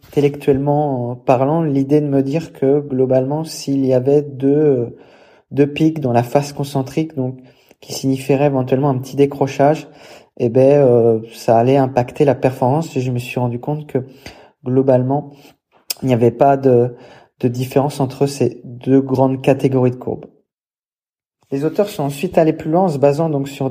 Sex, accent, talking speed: male, French, 170 wpm